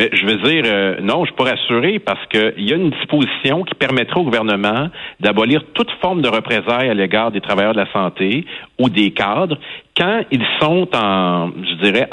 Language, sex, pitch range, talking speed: French, male, 105-150 Hz, 200 wpm